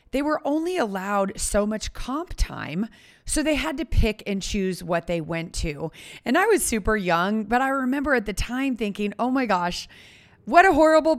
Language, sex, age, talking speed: English, female, 30-49, 200 wpm